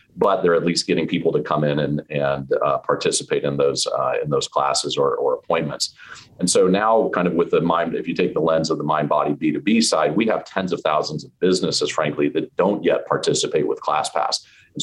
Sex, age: male, 40-59